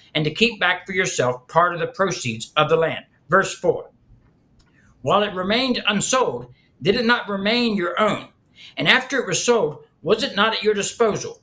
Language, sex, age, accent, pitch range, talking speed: English, male, 60-79, American, 155-215 Hz, 190 wpm